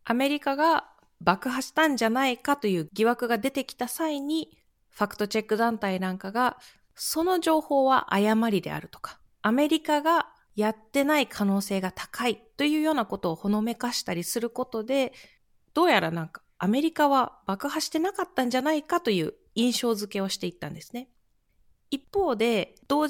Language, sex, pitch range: Japanese, female, 200-280 Hz